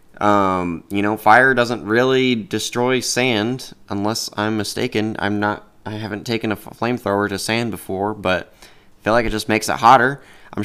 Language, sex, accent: English, male, American